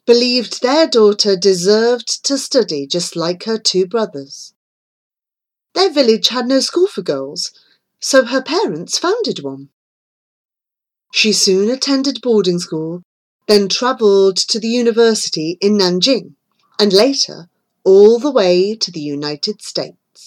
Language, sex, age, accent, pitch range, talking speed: English, female, 40-59, British, 175-250 Hz, 130 wpm